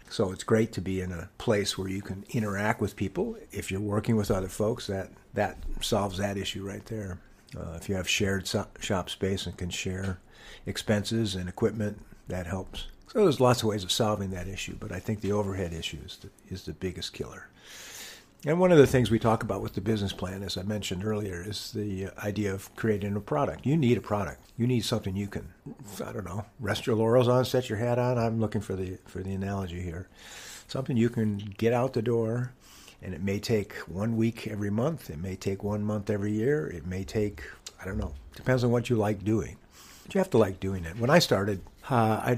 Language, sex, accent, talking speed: English, male, American, 230 wpm